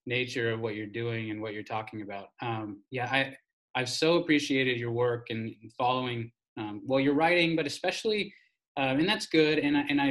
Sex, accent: male, American